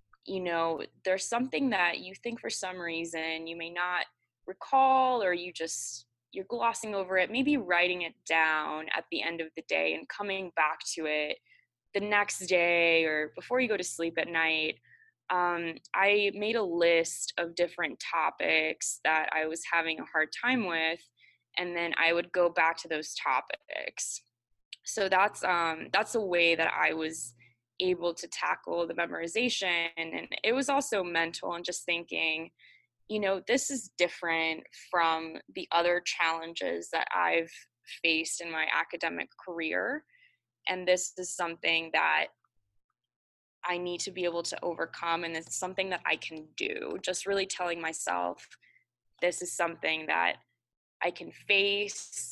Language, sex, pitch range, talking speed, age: English, female, 160-190 Hz, 160 wpm, 20-39